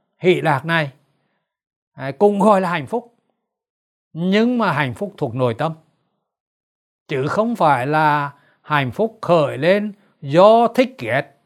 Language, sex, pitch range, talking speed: Vietnamese, male, 145-200 Hz, 135 wpm